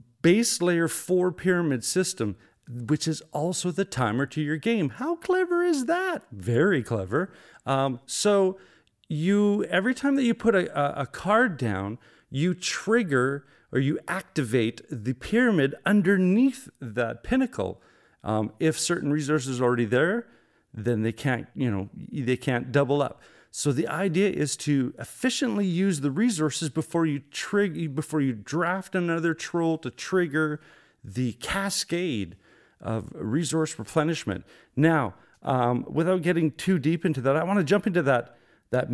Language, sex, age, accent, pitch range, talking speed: English, male, 40-59, American, 125-185 Hz, 150 wpm